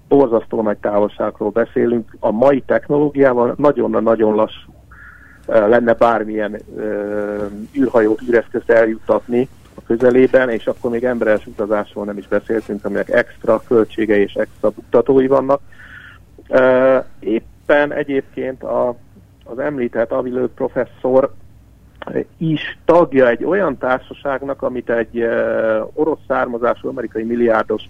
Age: 50-69